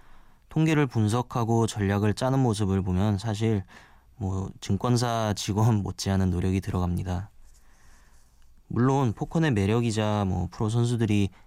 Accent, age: native, 20-39